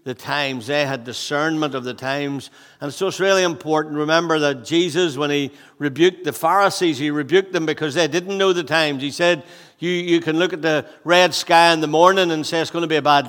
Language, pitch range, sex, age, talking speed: English, 150-180 Hz, male, 60-79, 230 wpm